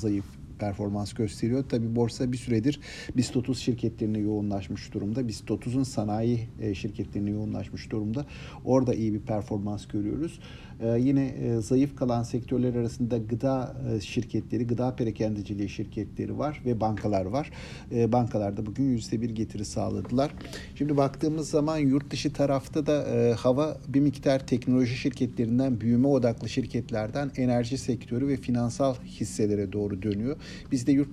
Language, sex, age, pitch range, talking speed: Turkish, male, 50-69, 110-135 Hz, 130 wpm